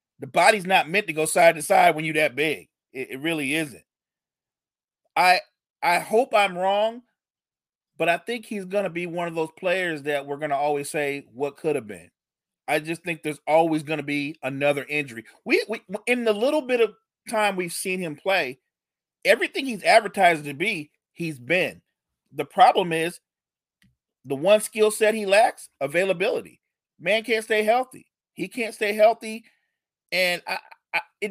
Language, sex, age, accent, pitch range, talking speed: English, male, 30-49, American, 165-225 Hz, 175 wpm